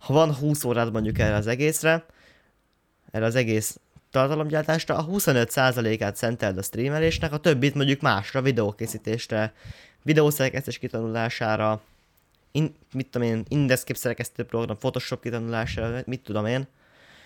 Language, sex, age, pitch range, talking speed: Hungarian, male, 20-39, 110-140 Hz, 125 wpm